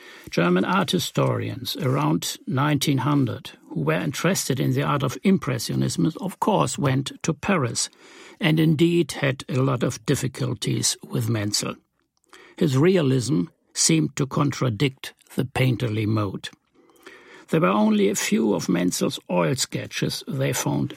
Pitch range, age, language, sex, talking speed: 125-170 Hz, 60-79, English, male, 130 wpm